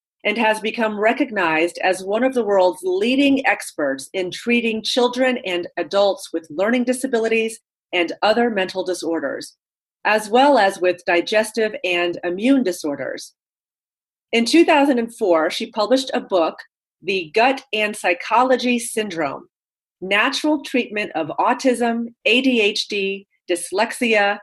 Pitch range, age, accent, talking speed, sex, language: 185-245 Hz, 30-49, American, 120 wpm, female, English